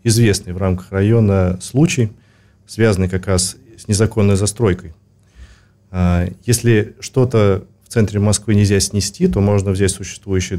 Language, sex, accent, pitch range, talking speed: Russian, male, native, 95-110 Hz, 125 wpm